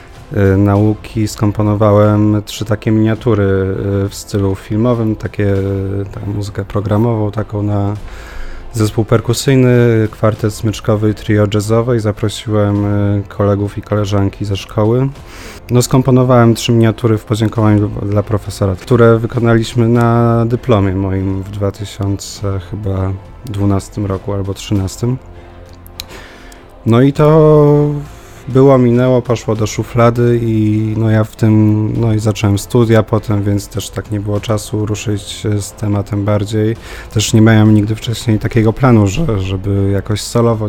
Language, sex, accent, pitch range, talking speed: Polish, male, native, 100-115 Hz, 120 wpm